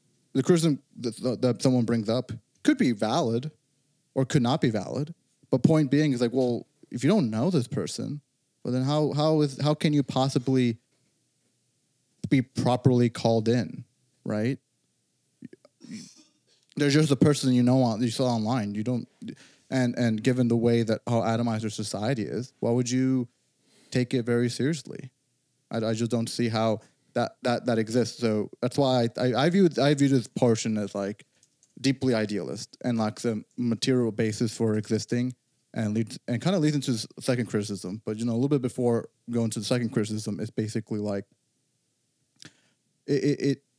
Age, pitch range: 30-49, 110-135 Hz